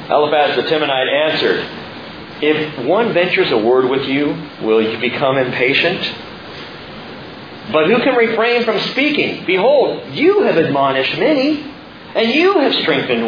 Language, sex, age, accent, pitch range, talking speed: English, male, 40-59, American, 145-235 Hz, 135 wpm